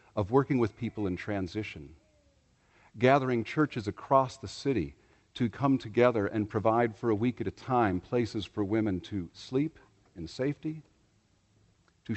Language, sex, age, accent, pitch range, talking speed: English, male, 50-69, American, 100-120 Hz, 150 wpm